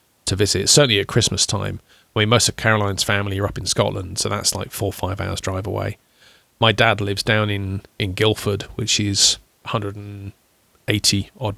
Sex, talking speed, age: male, 180 wpm, 30-49